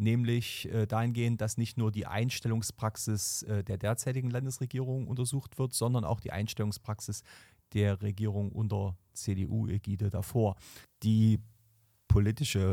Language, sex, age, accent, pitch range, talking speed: German, male, 40-59, German, 100-115 Hz, 110 wpm